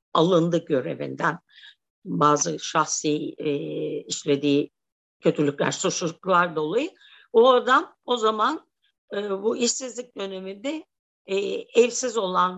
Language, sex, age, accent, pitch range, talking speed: Turkish, female, 50-69, native, 200-255 Hz, 95 wpm